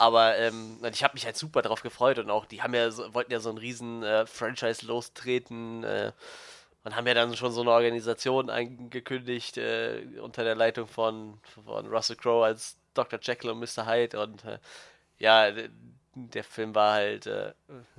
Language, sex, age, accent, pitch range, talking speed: German, male, 20-39, German, 110-125 Hz, 185 wpm